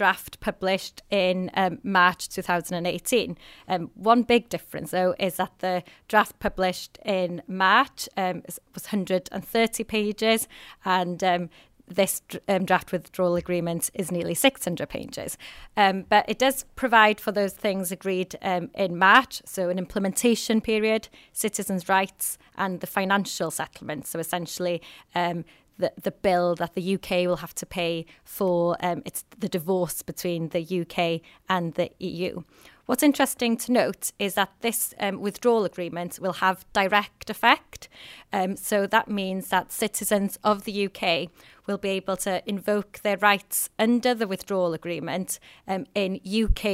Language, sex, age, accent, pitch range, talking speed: English, female, 20-39, British, 175-205 Hz, 150 wpm